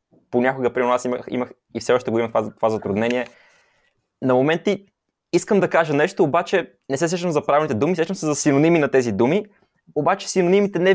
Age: 20-39